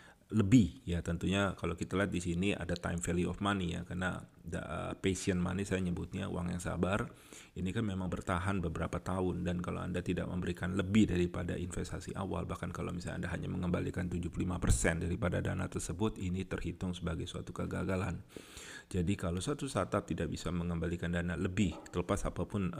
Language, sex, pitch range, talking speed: Indonesian, male, 85-95 Hz, 170 wpm